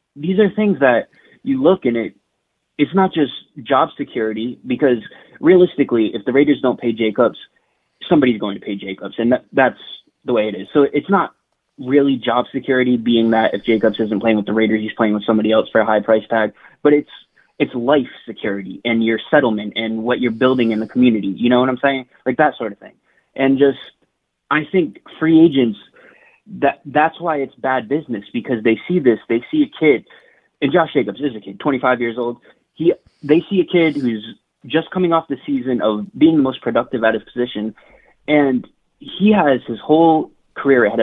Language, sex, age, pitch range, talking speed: English, male, 20-39, 115-150 Hz, 205 wpm